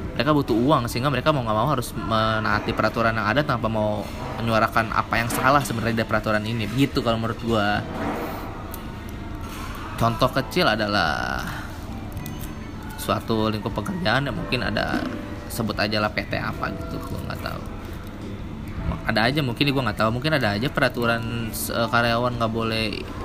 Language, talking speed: Indonesian, 145 wpm